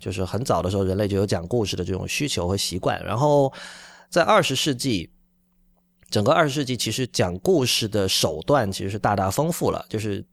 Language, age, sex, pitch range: Chinese, 20-39, male, 95-125 Hz